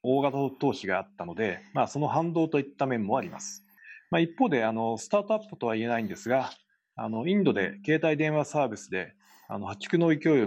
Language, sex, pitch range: Japanese, male, 115-165 Hz